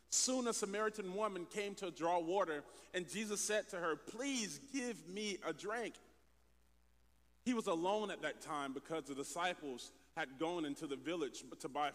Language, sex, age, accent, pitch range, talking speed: English, male, 40-59, American, 160-245 Hz, 170 wpm